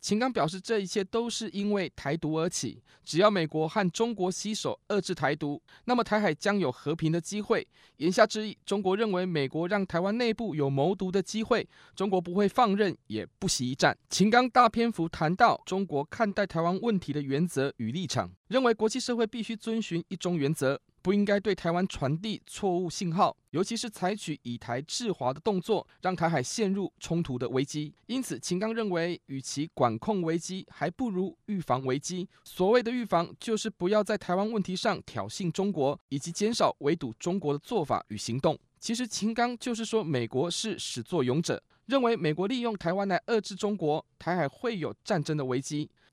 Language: Chinese